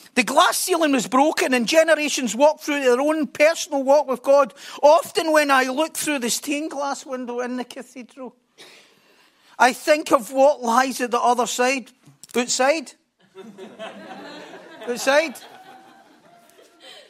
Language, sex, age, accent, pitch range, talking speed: English, male, 40-59, British, 210-280 Hz, 135 wpm